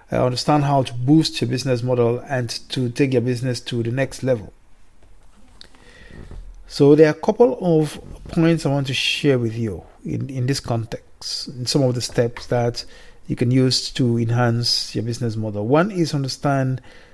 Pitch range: 120-145 Hz